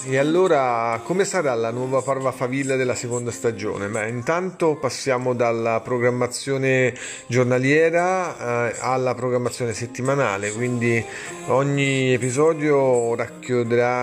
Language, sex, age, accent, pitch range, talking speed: Italian, male, 30-49, native, 115-130 Hz, 105 wpm